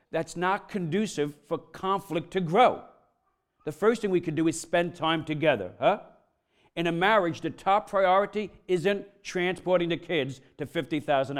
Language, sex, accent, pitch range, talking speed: English, male, American, 165-195 Hz, 160 wpm